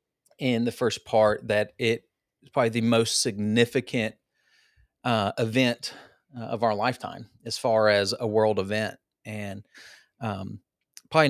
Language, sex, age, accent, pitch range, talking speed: English, male, 30-49, American, 105-130 Hz, 140 wpm